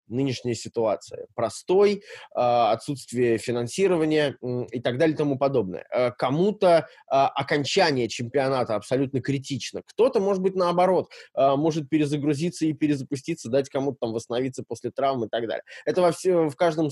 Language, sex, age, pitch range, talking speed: Russian, male, 20-39, 115-155 Hz, 135 wpm